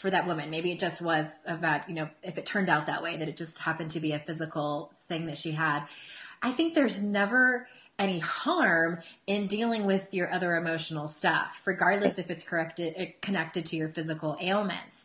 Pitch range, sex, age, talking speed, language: 160-200 Hz, female, 20-39, 200 wpm, English